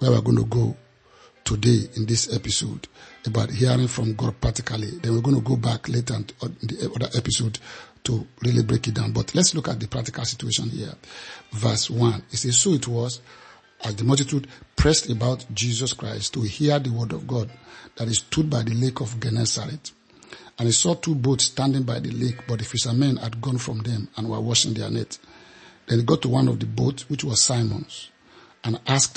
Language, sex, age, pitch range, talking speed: English, male, 50-69, 115-130 Hz, 210 wpm